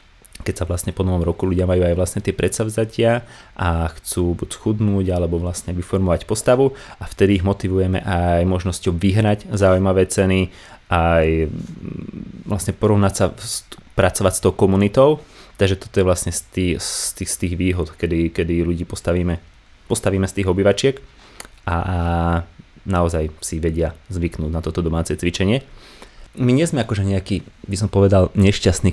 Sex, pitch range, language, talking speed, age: male, 90-105 Hz, Slovak, 150 wpm, 30-49